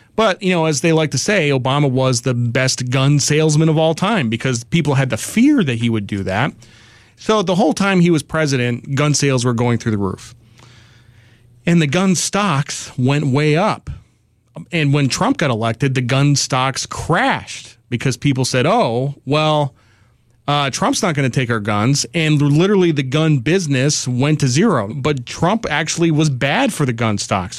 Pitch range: 120-160 Hz